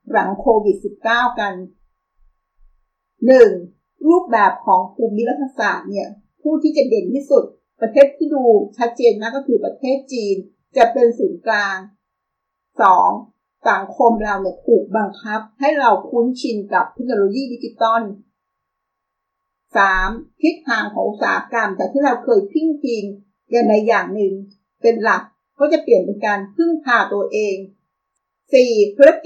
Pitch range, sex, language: 200-260 Hz, female, Thai